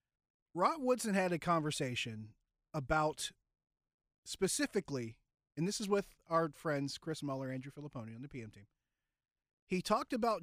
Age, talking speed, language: 30-49, 140 wpm, English